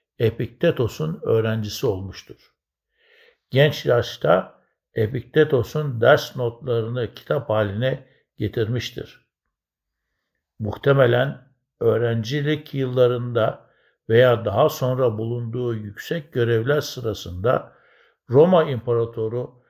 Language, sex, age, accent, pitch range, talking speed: Turkish, male, 60-79, native, 110-135 Hz, 70 wpm